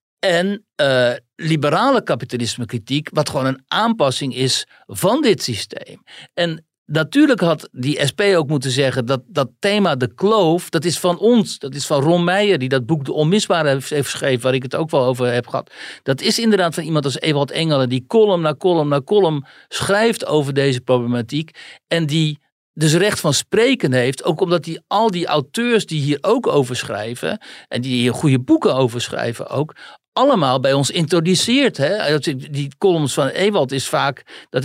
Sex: male